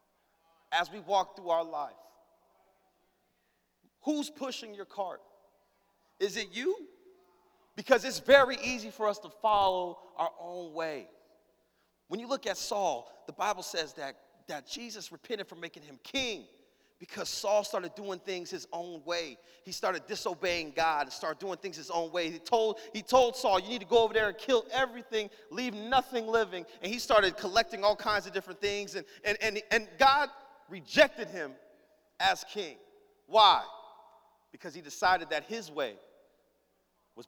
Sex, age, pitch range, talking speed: male, 30-49, 165-235 Hz, 165 wpm